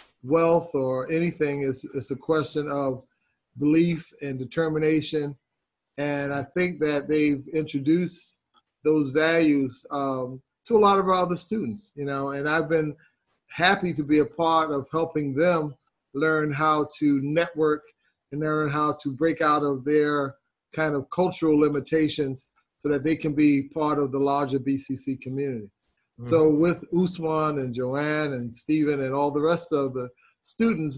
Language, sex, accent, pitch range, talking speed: English, male, American, 140-160 Hz, 155 wpm